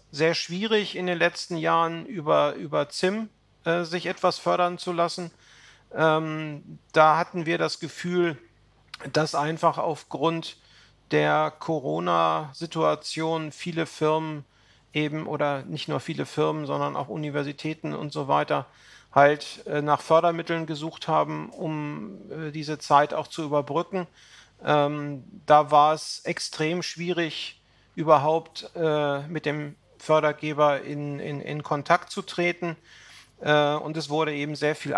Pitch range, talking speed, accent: 145-170 Hz, 130 wpm, German